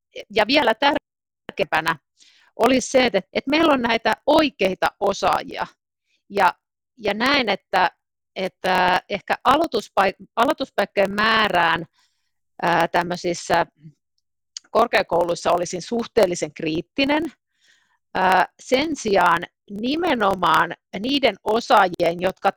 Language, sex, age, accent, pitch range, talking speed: Finnish, female, 50-69, native, 175-235 Hz, 80 wpm